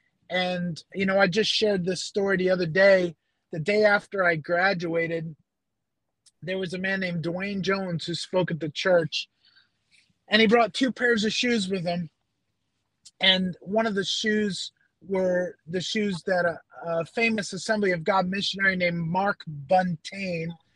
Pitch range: 165-195 Hz